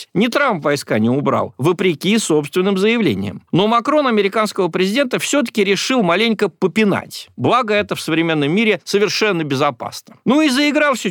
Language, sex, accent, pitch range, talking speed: Russian, male, native, 130-195 Hz, 140 wpm